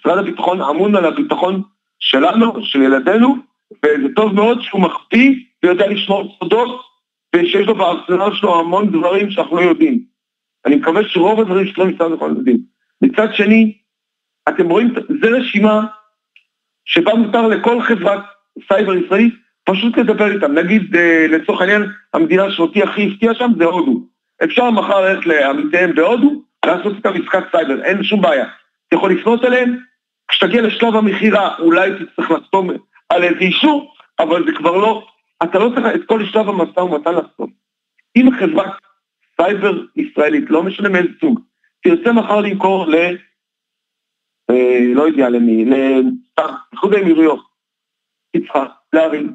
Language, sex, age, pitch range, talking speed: Hebrew, male, 50-69, 180-235 Hz, 140 wpm